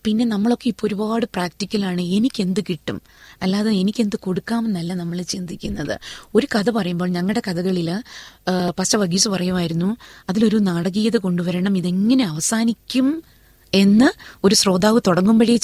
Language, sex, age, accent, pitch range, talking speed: Malayalam, female, 30-49, native, 180-215 Hz, 105 wpm